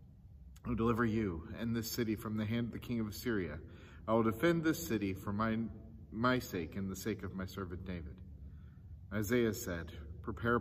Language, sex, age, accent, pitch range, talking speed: English, male, 40-59, American, 90-120 Hz, 185 wpm